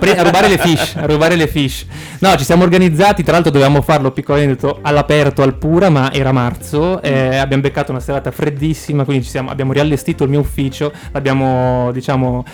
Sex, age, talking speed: male, 20-39, 185 wpm